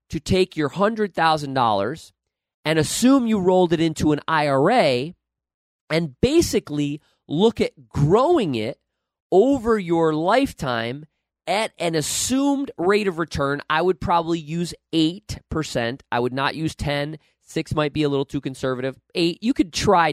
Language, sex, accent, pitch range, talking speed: English, male, American, 135-175 Hz, 145 wpm